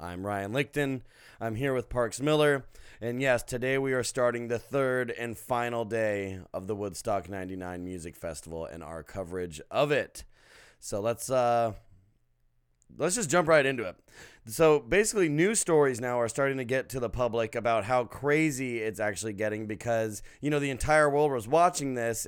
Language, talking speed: English, 180 wpm